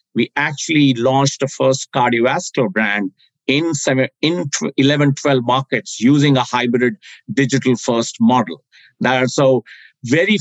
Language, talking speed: English, 125 wpm